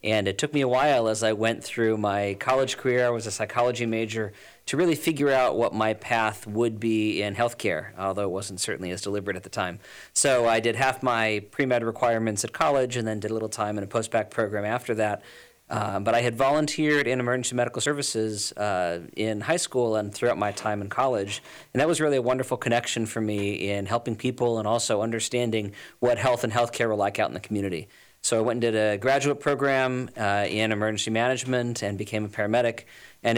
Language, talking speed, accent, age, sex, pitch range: English, 215 wpm, American, 40-59, male, 105-120 Hz